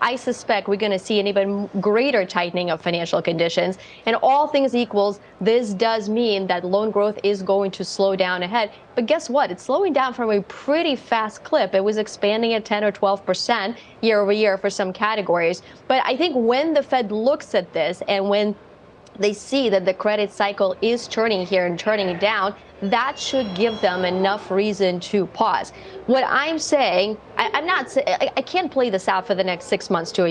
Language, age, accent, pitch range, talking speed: English, 30-49, American, 195-245 Hz, 200 wpm